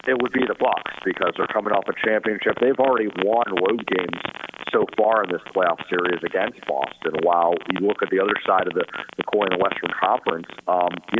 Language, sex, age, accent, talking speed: English, male, 50-69, American, 215 wpm